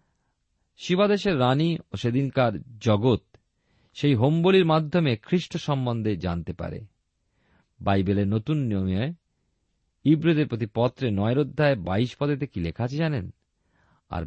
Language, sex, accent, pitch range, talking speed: Bengali, male, native, 100-150 Hz, 85 wpm